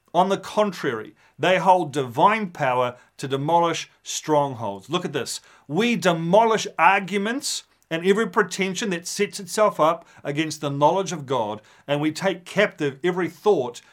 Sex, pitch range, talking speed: male, 150-195 Hz, 145 wpm